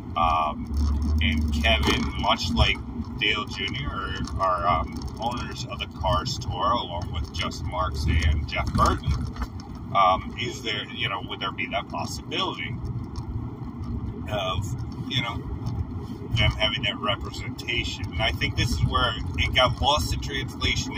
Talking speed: 140 wpm